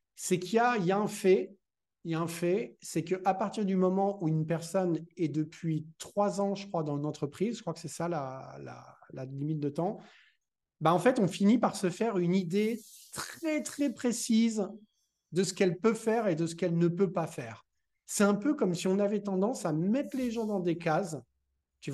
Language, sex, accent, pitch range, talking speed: French, male, French, 155-200 Hz, 210 wpm